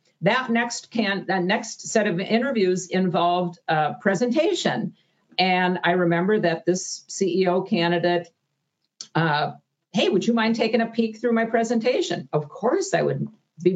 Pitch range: 170-225 Hz